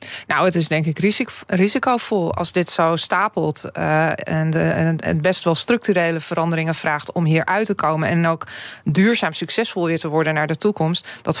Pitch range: 170-205 Hz